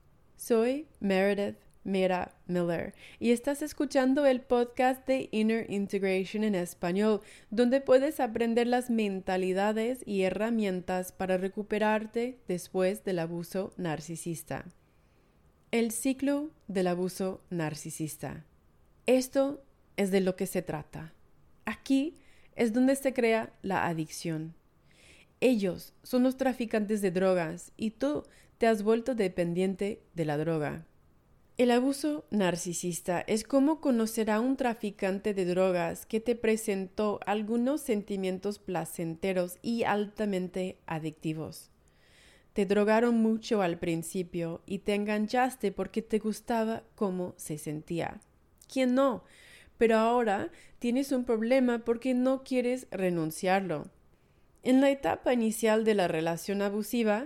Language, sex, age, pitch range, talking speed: Spanish, female, 30-49, 185-240 Hz, 120 wpm